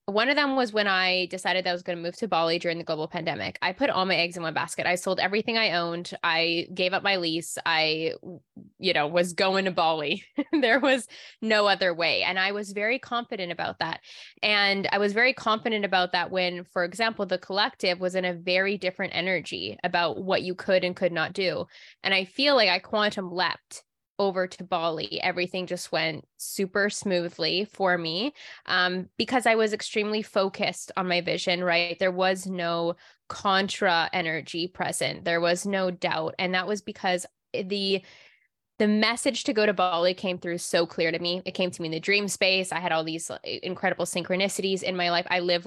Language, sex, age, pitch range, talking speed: English, female, 10-29, 170-200 Hz, 205 wpm